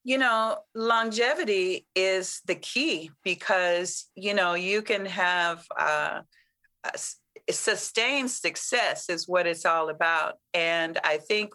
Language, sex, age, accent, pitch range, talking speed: English, female, 40-59, American, 170-205 Hz, 125 wpm